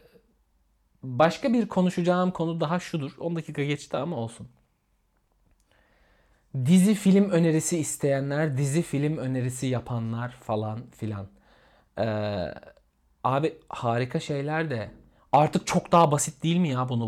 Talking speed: 120 wpm